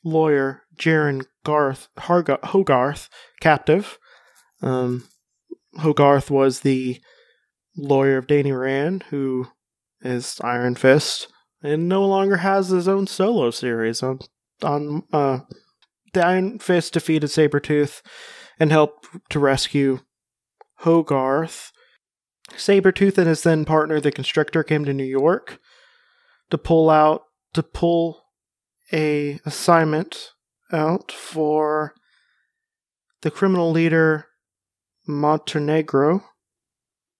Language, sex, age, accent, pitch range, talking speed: English, male, 30-49, American, 140-170 Hz, 100 wpm